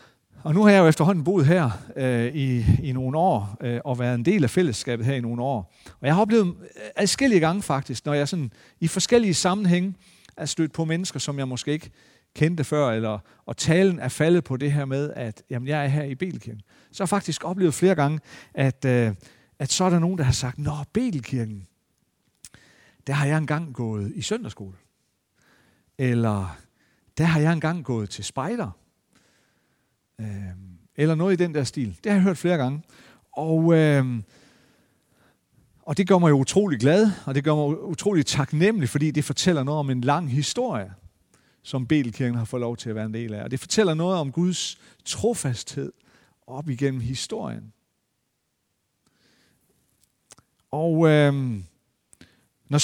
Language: Danish